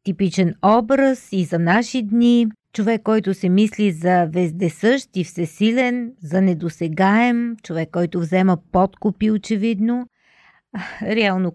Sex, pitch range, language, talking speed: female, 175-220 Hz, Bulgarian, 115 wpm